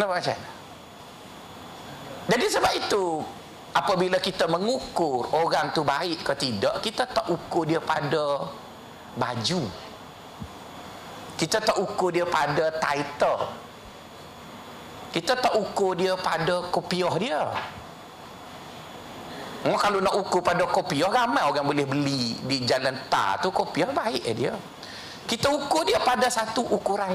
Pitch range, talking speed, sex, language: 150-205 Hz, 120 wpm, male, Malay